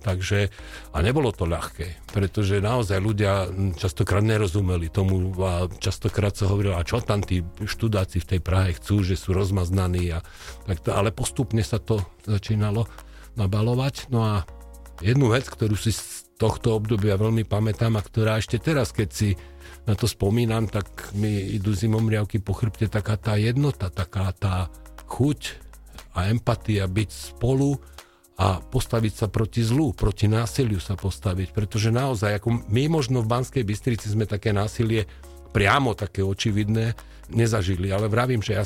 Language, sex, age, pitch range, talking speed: Slovak, male, 50-69, 95-115 Hz, 155 wpm